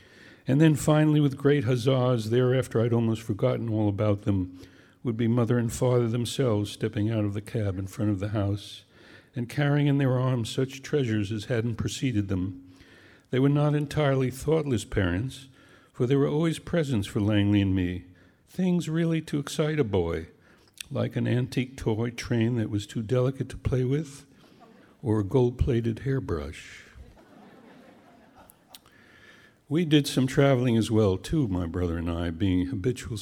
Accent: American